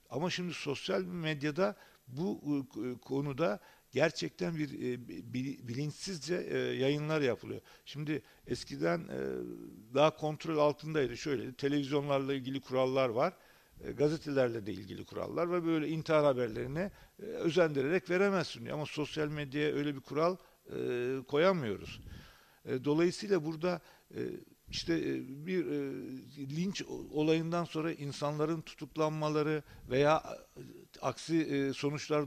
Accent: native